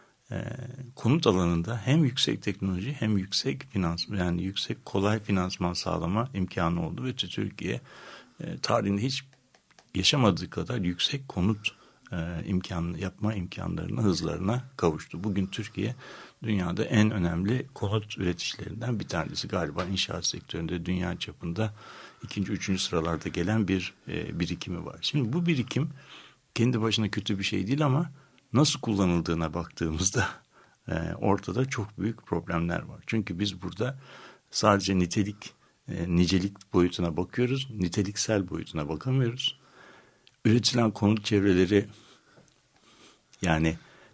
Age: 60-79